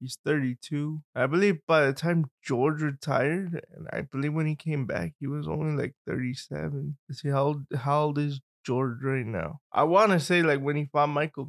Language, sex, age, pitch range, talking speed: English, male, 20-39, 135-160 Hz, 205 wpm